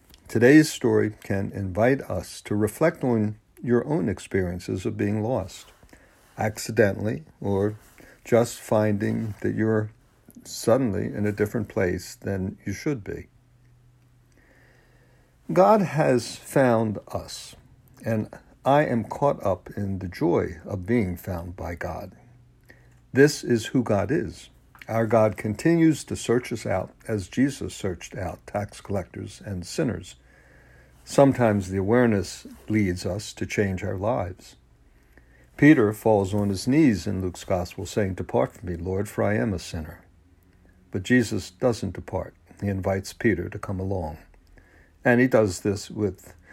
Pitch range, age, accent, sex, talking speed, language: 90-120 Hz, 60-79, American, male, 140 wpm, English